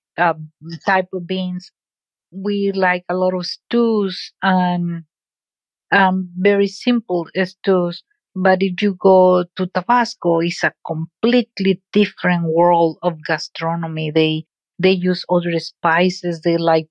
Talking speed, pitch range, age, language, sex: 125 wpm, 175-195 Hz, 50-69, English, female